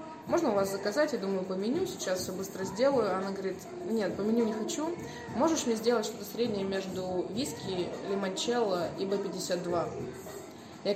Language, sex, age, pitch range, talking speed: Russian, female, 20-39, 190-240 Hz, 165 wpm